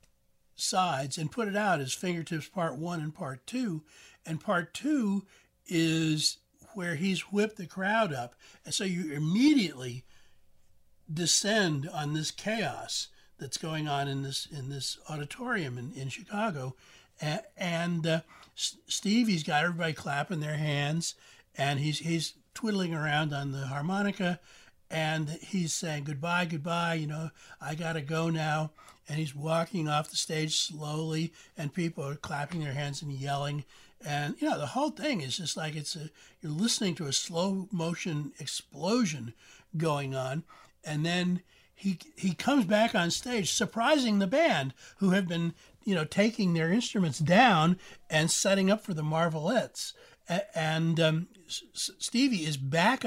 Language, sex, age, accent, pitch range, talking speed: English, male, 60-79, American, 150-195 Hz, 155 wpm